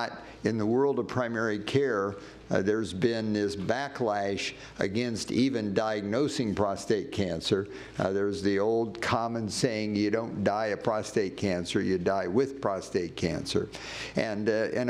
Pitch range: 105-130 Hz